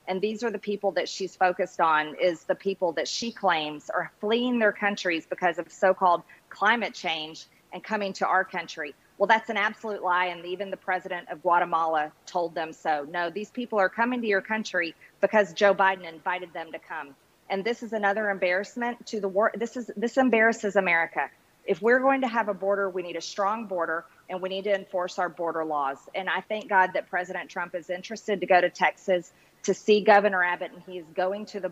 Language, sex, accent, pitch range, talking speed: English, female, American, 175-205 Hz, 215 wpm